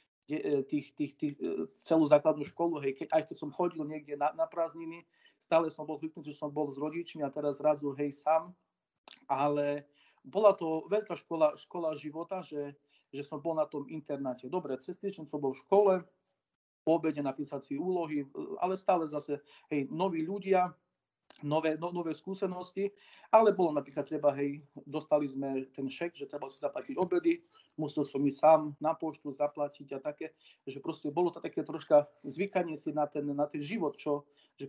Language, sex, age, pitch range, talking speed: Slovak, male, 40-59, 145-175 Hz, 180 wpm